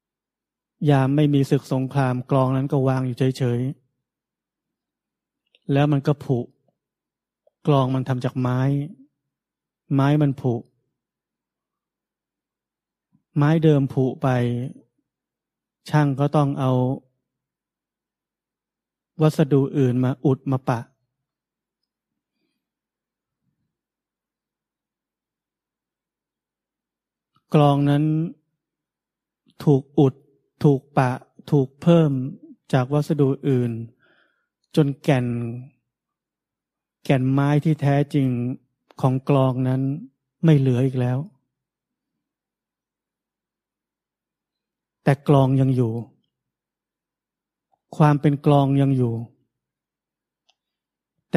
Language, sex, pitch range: Thai, male, 130-145 Hz